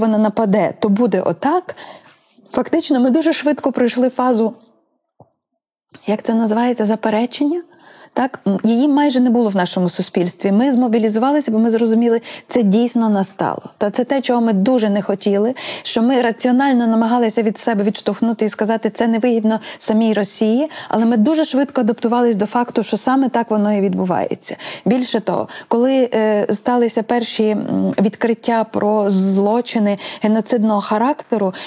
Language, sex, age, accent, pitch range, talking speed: Ukrainian, female, 20-39, native, 215-255 Hz, 145 wpm